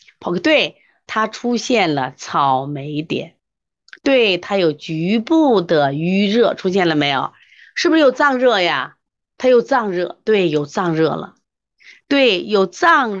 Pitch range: 155-240 Hz